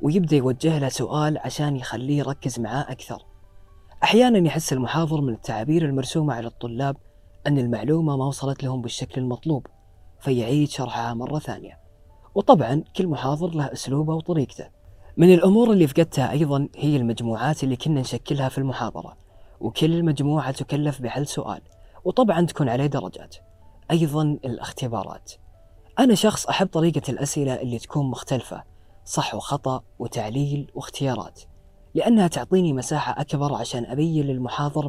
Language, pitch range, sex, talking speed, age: Arabic, 110-150 Hz, female, 130 wpm, 20-39